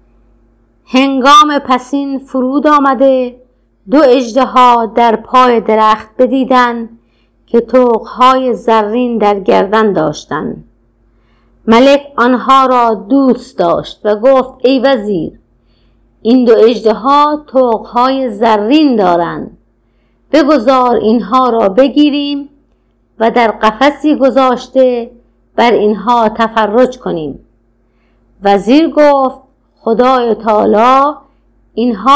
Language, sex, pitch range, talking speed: Persian, female, 220-265 Hz, 95 wpm